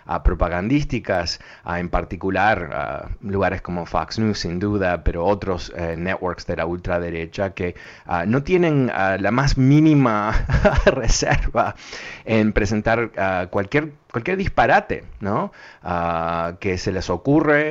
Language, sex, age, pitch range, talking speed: Spanish, male, 30-49, 90-120 Hz, 135 wpm